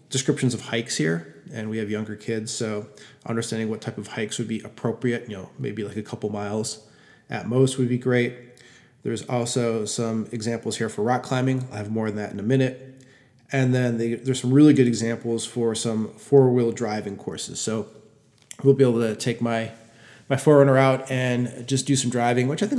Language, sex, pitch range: English, male, 110-130 Hz